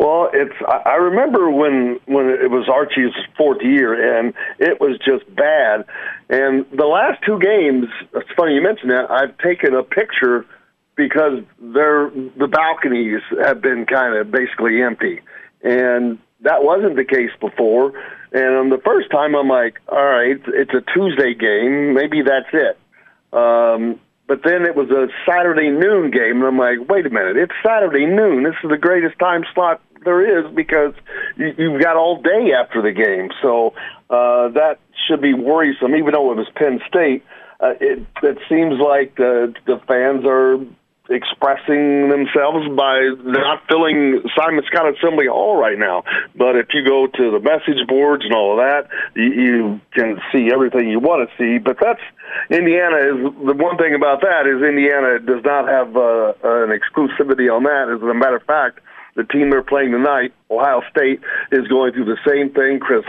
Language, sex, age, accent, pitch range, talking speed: English, male, 50-69, American, 125-155 Hz, 175 wpm